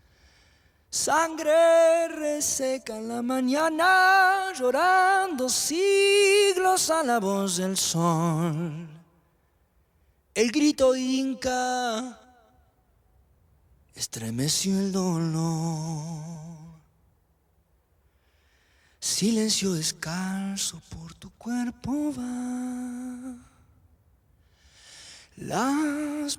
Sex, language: male, Spanish